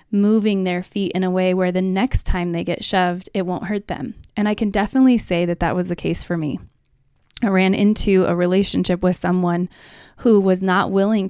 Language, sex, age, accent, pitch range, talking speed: English, female, 20-39, American, 180-210 Hz, 210 wpm